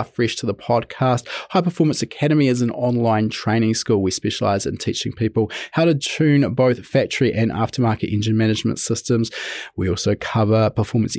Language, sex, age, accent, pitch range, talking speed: English, male, 20-39, Australian, 105-125 Hz, 165 wpm